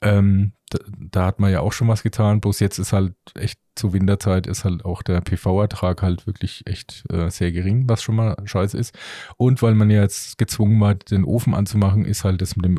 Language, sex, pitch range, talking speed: German, male, 95-115 Hz, 225 wpm